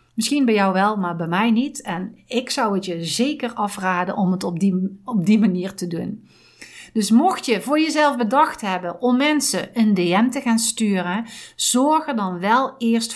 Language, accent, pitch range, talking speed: Dutch, Dutch, 185-250 Hz, 190 wpm